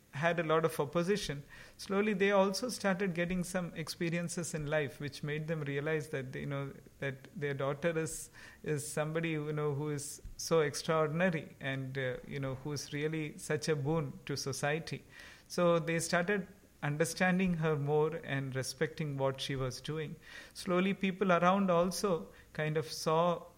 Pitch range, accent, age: 140-170 Hz, Indian, 50-69